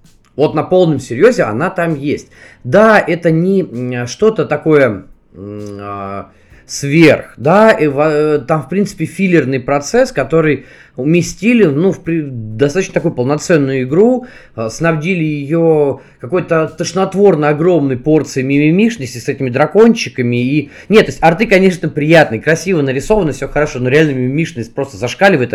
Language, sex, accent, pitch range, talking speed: Russian, male, native, 130-175 Hz, 130 wpm